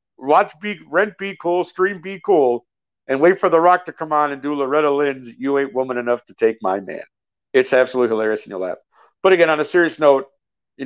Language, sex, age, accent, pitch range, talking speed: English, male, 50-69, American, 120-155 Hz, 225 wpm